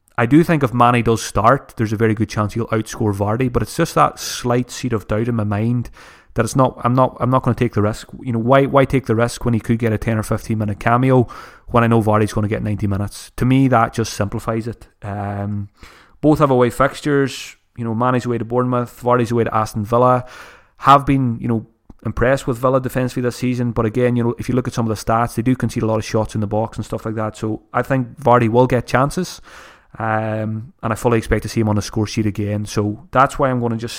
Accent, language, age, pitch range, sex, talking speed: British, English, 30-49, 110-125 Hz, male, 265 wpm